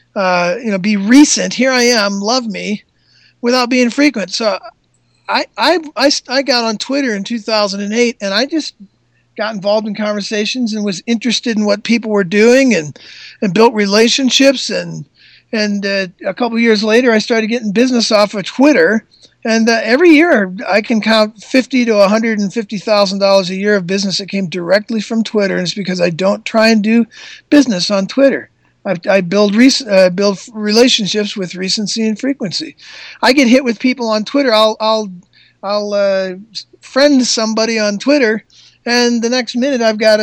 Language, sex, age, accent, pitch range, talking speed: English, male, 50-69, American, 205-240 Hz, 175 wpm